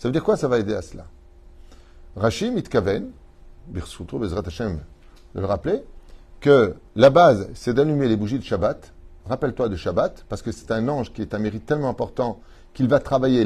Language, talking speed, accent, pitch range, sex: French, 195 wpm, French, 90-120 Hz, male